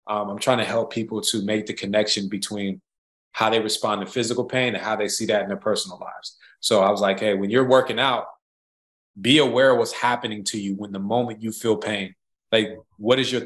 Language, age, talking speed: English, 20-39, 230 wpm